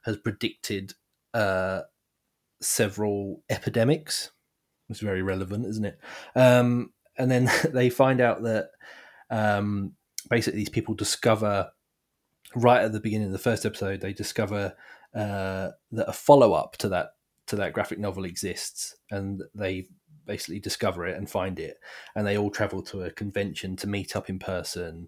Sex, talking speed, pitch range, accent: male, 155 wpm, 95-110 Hz, British